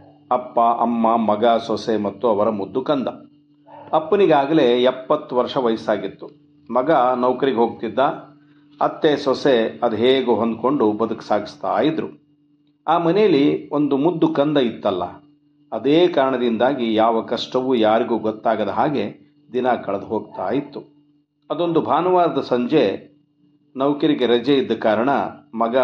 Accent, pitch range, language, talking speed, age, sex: native, 115-145 Hz, Kannada, 110 wpm, 50-69, male